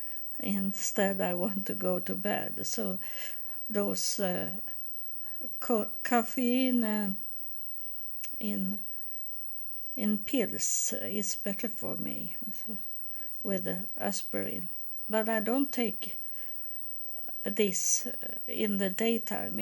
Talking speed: 95 wpm